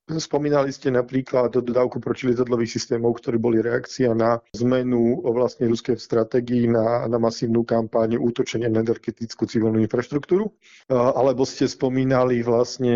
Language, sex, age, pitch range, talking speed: Slovak, male, 40-59, 115-125 Hz, 120 wpm